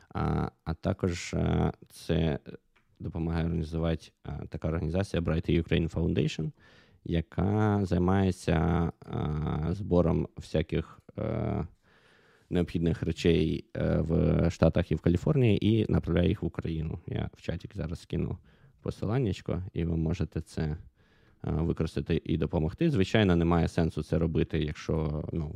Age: 20-39